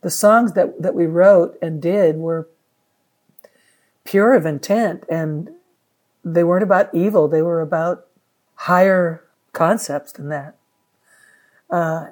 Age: 60-79